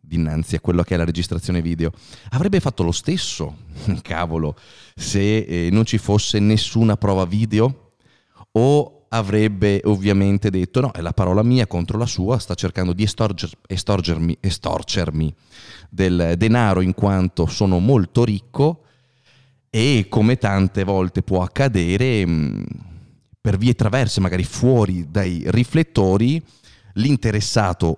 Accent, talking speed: native, 125 wpm